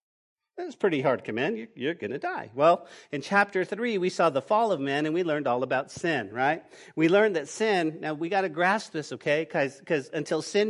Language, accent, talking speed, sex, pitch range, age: English, American, 220 wpm, male, 145-200 Hz, 40-59